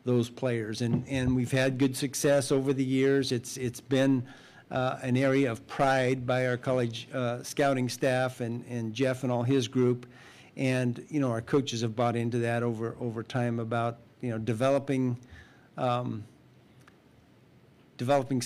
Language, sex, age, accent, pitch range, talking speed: English, male, 50-69, American, 115-130 Hz, 165 wpm